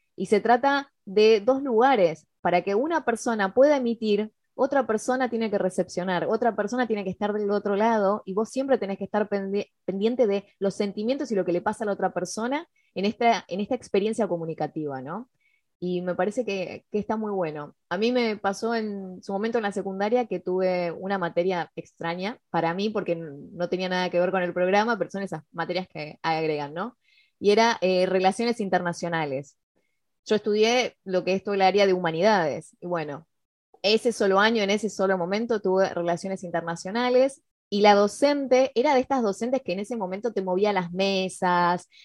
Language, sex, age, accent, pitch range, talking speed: Spanish, female, 20-39, Argentinian, 180-235 Hz, 190 wpm